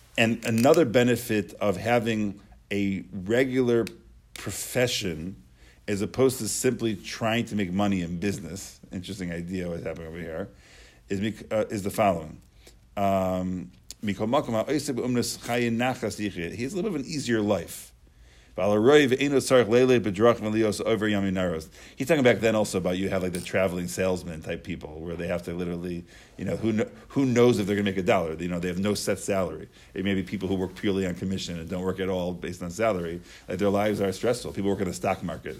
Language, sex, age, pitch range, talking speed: English, male, 50-69, 90-110 Hz, 175 wpm